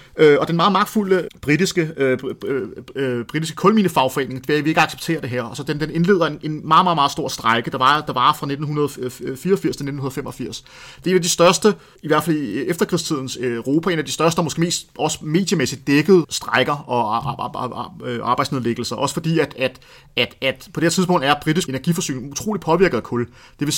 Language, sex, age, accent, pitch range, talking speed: Danish, male, 30-49, native, 130-165 Hz, 205 wpm